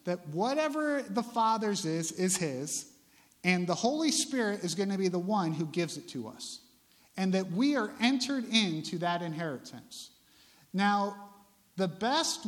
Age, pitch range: 50-69, 165-225 Hz